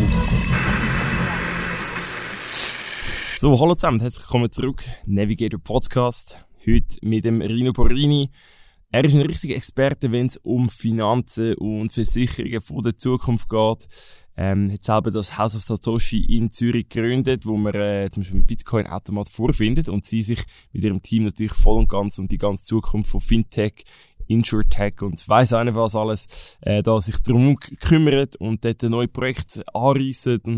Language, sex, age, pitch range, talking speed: German, male, 20-39, 105-120 Hz, 155 wpm